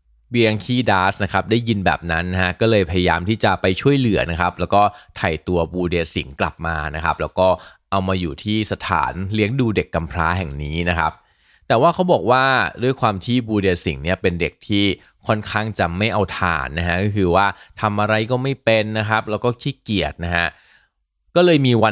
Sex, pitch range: male, 90-115 Hz